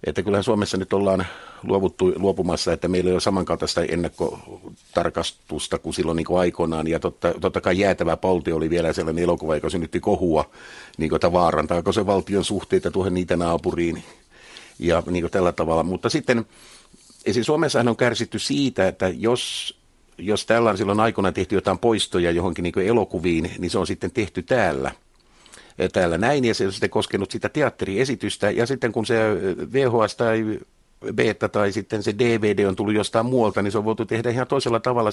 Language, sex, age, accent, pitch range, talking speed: Finnish, male, 50-69, native, 90-120 Hz, 175 wpm